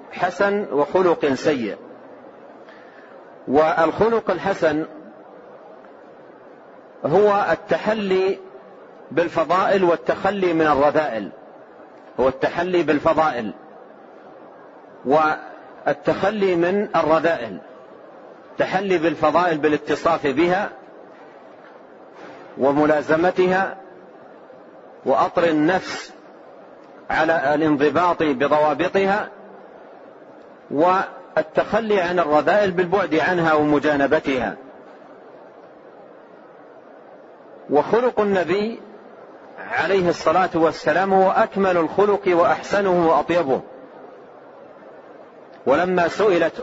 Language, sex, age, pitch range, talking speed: Arabic, male, 40-59, 155-190 Hz, 55 wpm